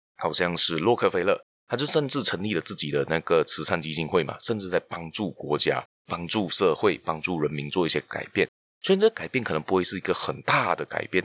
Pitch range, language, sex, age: 85-125 Hz, Chinese, male, 20-39